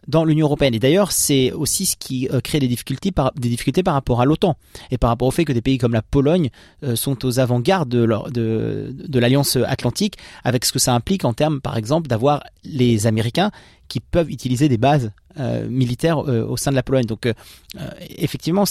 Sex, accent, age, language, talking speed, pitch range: male, French, 30-49, French, 230 wpm, 120-150 Hz